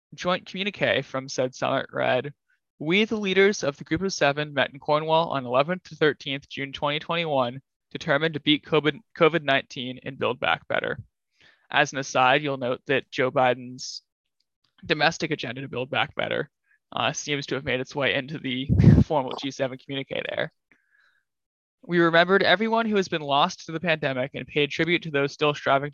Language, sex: English, male